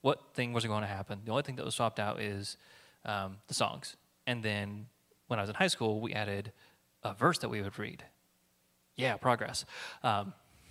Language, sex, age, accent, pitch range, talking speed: English, male, 30-49, American, 105-140 Hz, 195 wpm